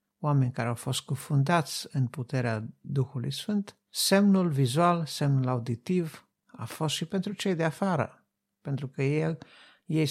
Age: 60-79